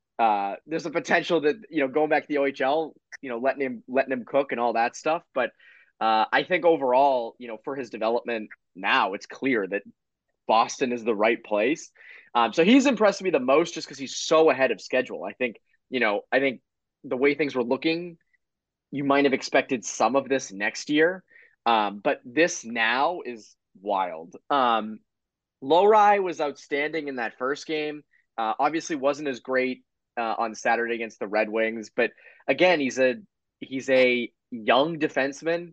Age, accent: 20-39, American